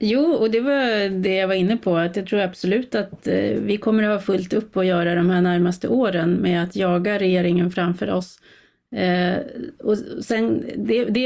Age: 30-49